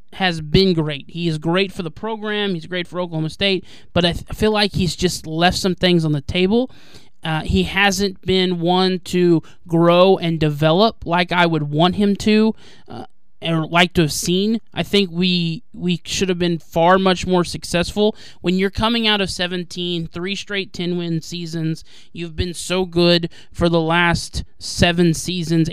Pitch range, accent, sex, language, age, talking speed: 165-190 Hz, American, male, English, 20-39, 185 wpm